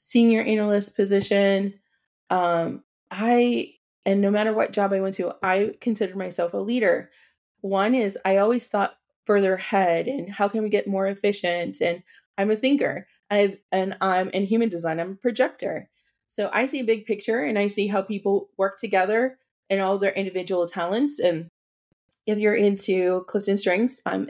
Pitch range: 195-230 Hz